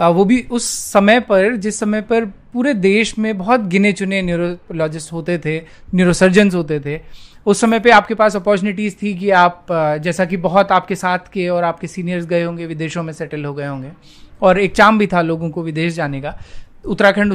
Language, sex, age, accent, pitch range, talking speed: Hindi, male, 30-49, native, 160-205 Hz, 195 wpm